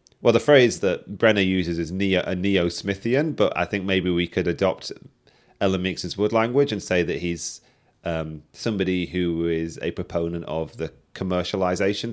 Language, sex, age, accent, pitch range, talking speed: English, male, 30-49, British, 85-105 Hz, 170 wpm